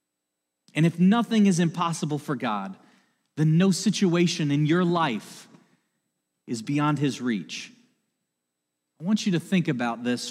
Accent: American